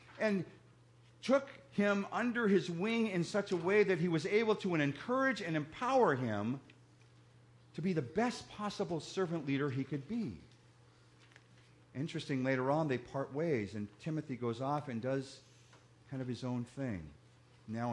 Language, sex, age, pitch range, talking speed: English, male, 50-69, 105-150 Hz, 155 wpm